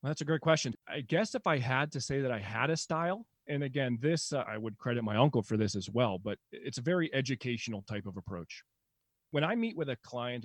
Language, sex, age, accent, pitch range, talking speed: English, male, 30-49, American, 110-150 Hz, 240 wpm